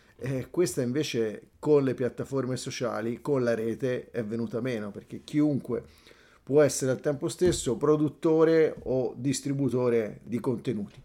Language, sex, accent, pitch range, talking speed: Italian, male, native, 115-145 Hz, 135 wpm